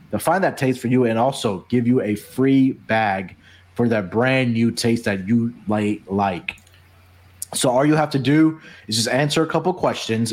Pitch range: 105-140 Hz